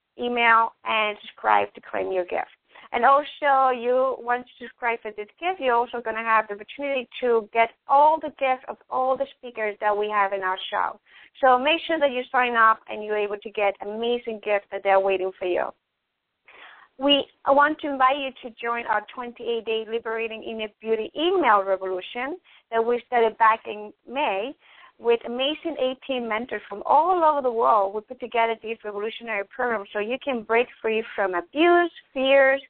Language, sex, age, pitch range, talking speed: English, female, 30-49, 210-265 Hz, 185 wpm